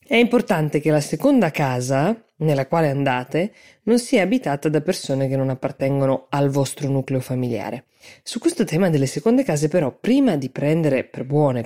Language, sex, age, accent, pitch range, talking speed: Italian, female, 20-39, native, 135-170 Hz, 170 wpm